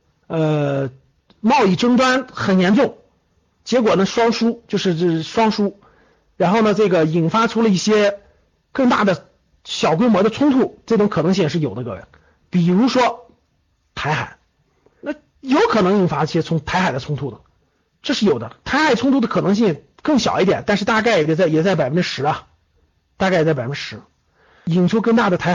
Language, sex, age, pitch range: Chinese, male, 50-69, 155-235 Hz